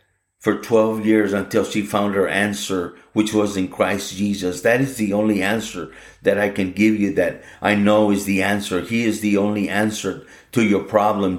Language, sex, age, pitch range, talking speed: English, male, 50-69, 95-105 Hz, 195 wpm